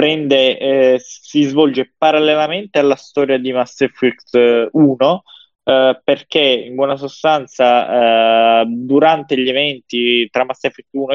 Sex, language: male, Italian